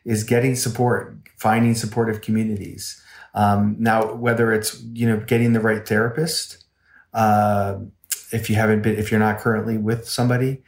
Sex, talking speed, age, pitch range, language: male, 150 wpm, 30-49, 105-120 Hz, English